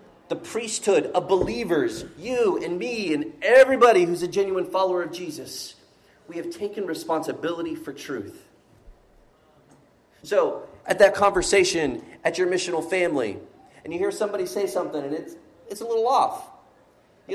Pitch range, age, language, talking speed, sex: 150-220 Hz, 30-49, English, 145 wpm, male